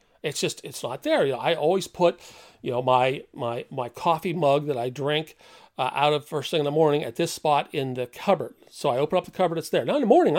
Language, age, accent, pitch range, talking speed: English, 40-59, American, 135-195 Hz, 265 wpm